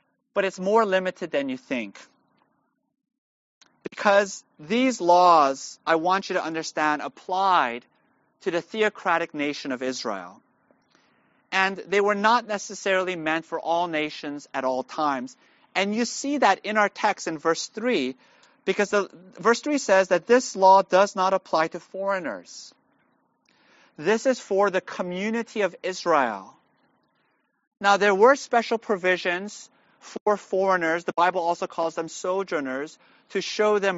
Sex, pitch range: male, 165-225 Hz